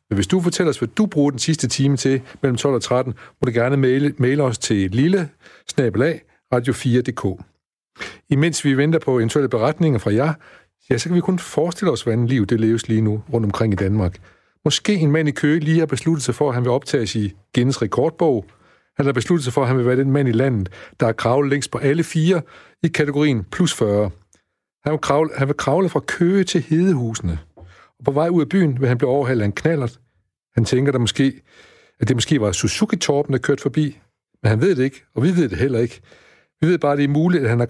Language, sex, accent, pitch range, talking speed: Danish, male, native, 115-150 Hz, 230 wpm